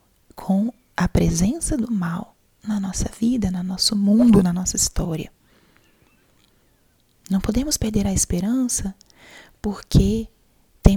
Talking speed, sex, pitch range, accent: 115 wpm, female, 185-215 Hz, Brazilian